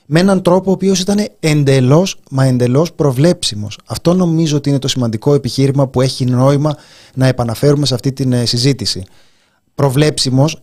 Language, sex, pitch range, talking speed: Greek, male, 130-165 Hz, 150 wpm